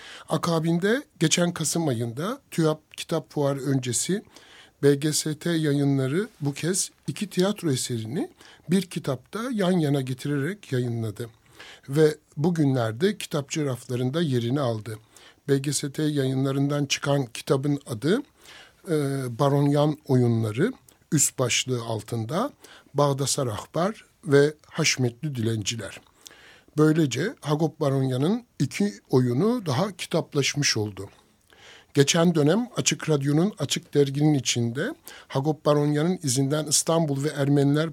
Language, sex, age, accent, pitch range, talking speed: Turkish, male, 60-79, native, 135-165 Hz, 105 wpm